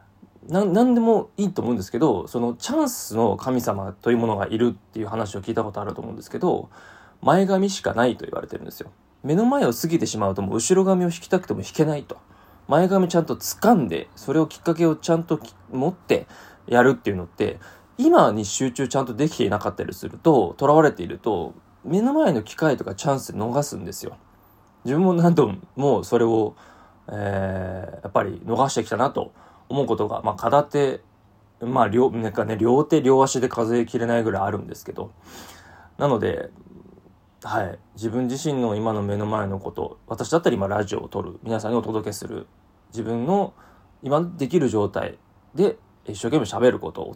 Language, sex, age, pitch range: Japanese, male, 20-39, 105-145 Hz